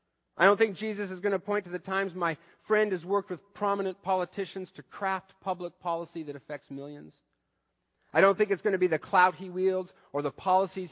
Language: English